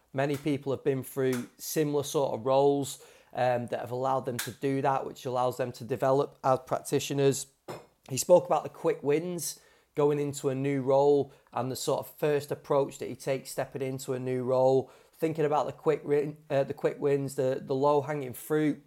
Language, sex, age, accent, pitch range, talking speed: English, male, 30-49, British, 130-145 Hz, 195 wpm